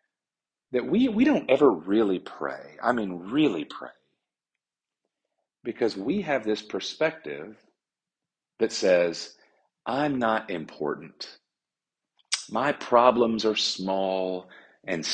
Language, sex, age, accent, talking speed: English, male, 40-59, American, 105 wpm